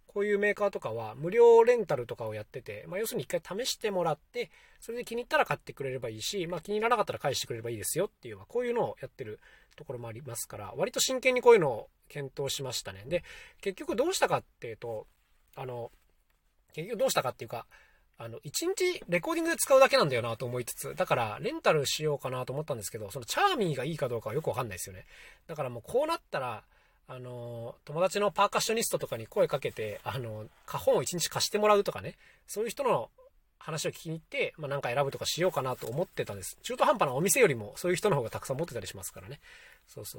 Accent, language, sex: native, Japanese, male